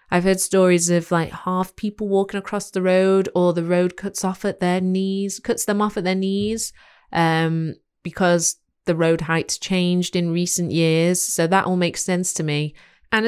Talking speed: 190 wpm